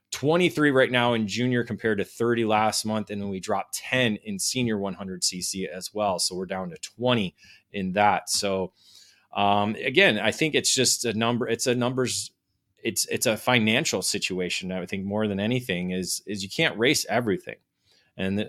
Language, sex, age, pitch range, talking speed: English, male, 20-39, 100-120 Hz, 185 wpm